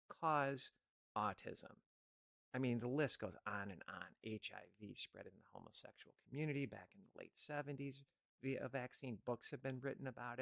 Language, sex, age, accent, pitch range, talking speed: English, male, 50-69, American, 110-135 Hz, 160 wpm